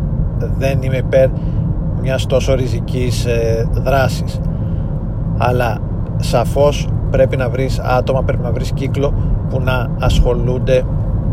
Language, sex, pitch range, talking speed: Greek, male, 120-130 Hz, 105 wpm